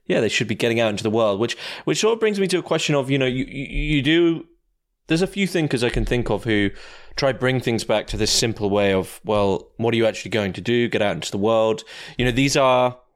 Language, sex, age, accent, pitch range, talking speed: English, male, 20-39, British, 110-130 Hz, 280 wpm